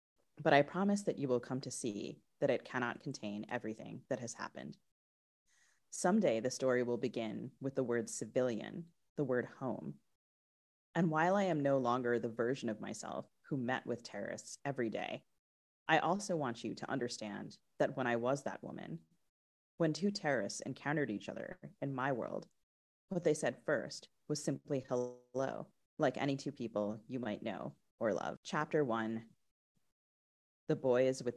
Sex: female